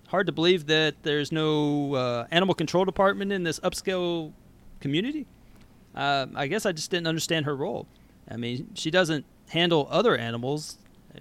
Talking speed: 165 wpm